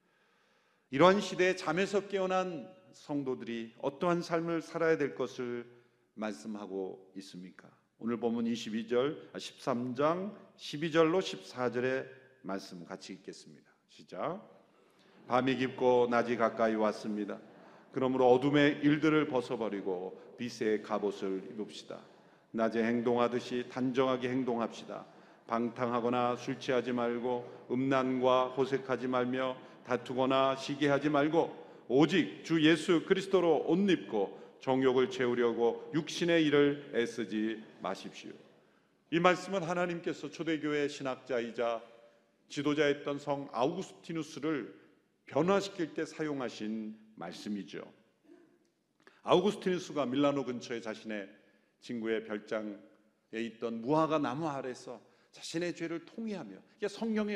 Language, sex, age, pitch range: Korean, male, 40-59, 115-155 Hz